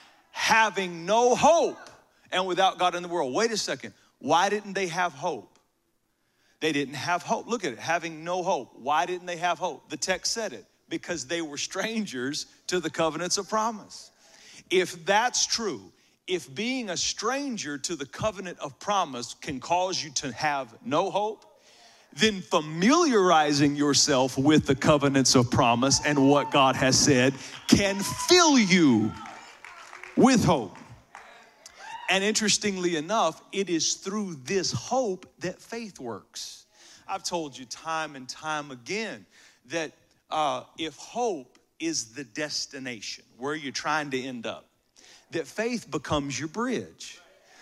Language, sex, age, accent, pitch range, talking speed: English, male, 40-59, American, 150-215 Hz, 150 wpm